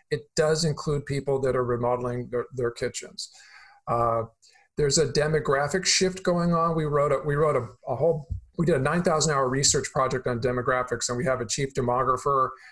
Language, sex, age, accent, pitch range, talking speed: English, male, 40-59, American, 125-150 Hz, 190 wpm